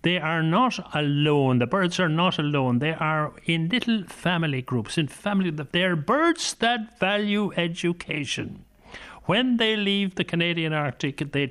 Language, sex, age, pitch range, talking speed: English, male, 60-79, 145-190 Hz, 160 wpm